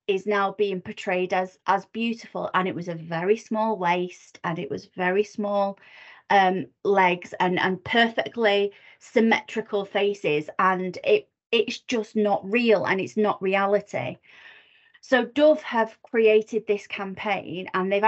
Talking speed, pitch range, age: 145 wpm, 190-220 Hz, 30-49